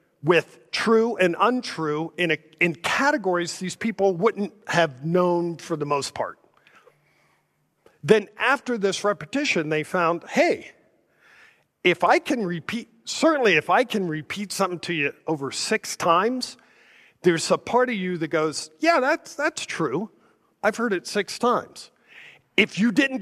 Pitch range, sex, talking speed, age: 155-225 Hz, male, 150 wpm, 50-69